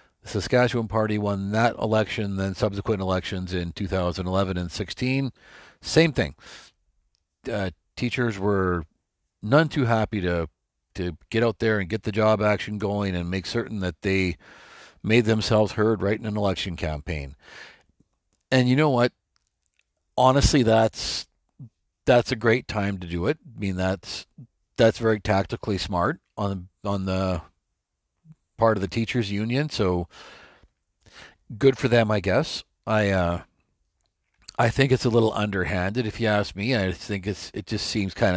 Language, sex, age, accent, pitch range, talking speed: English, male, 40-59, American, 95-115 Hz, 155 wpm